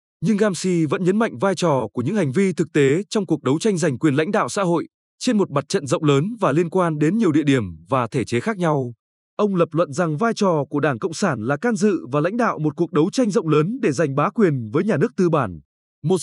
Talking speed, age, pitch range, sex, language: 270 wpm, 20-39, 145-205 Hz, male, Vietnamese